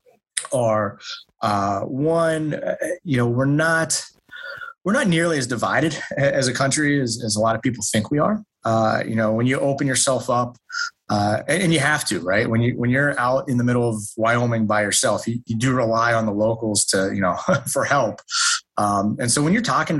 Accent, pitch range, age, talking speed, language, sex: American, 110-145 Hz, 30-49, 205 wpm, English, male